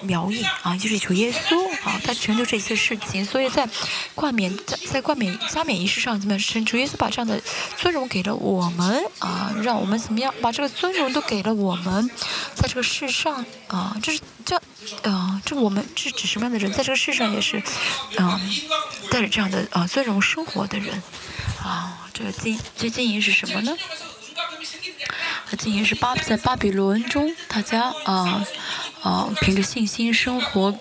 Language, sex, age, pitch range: Chinese, female, 20-39, 195-255 Hz